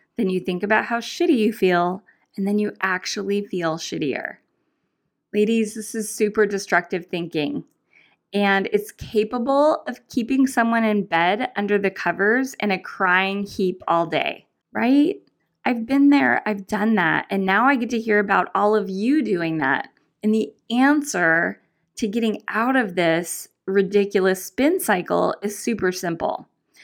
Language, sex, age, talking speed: English, female, 20-39, 155 wpm